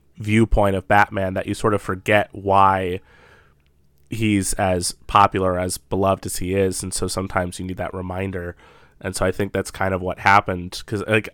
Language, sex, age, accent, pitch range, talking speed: English, male, 30-49, American, 90-110 Hz, 185 wpm